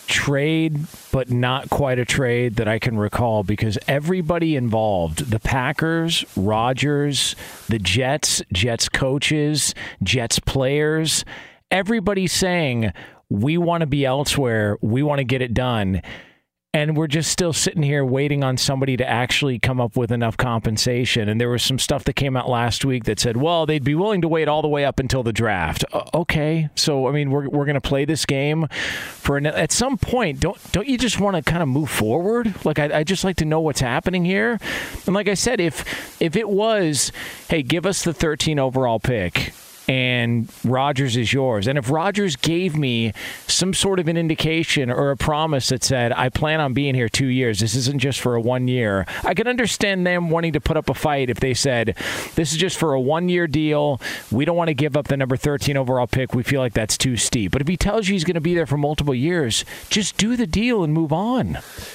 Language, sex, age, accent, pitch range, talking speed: English, male, 40-59, American, 125-160 Hz, 210 wpm